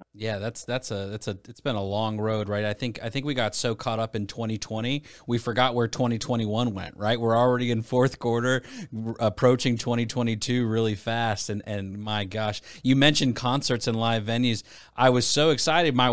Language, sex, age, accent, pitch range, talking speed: English, male, 30-49, American, 110-130 Hz, 195 wpm